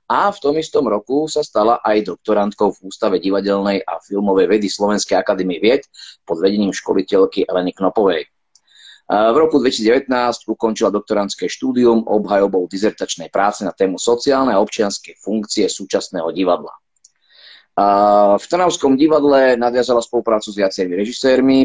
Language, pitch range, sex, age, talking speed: Slovak, 100-120 Hz, male, 30-49, 135 wpm